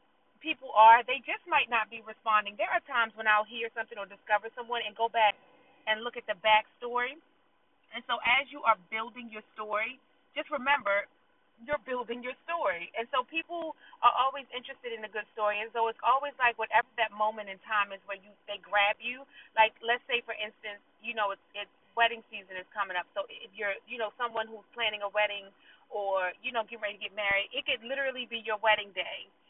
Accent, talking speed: American, 215 wpm